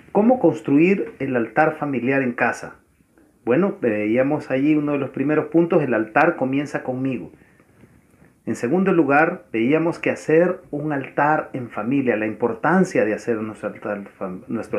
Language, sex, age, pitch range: Spanish, male, 40-59, 125-165 Hz